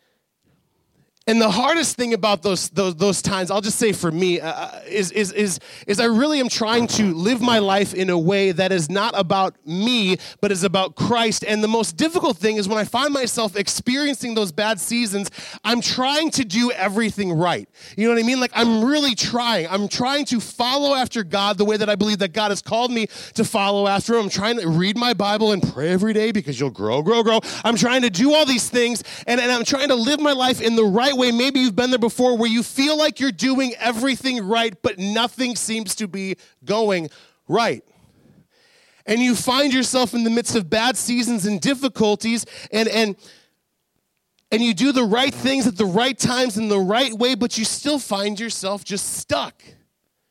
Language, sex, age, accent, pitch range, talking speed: English, male, 30-49, American, 200-245 Hz, 210 wpm